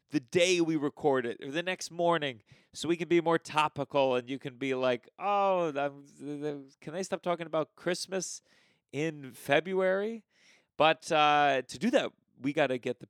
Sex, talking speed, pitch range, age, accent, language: male, 190 wpm, 130-180 Hz, 30-49, American, English